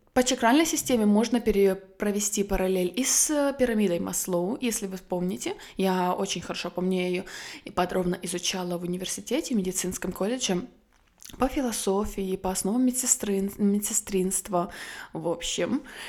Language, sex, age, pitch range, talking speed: Russian, female, 20-39, 185-225 Hz, 125 wpm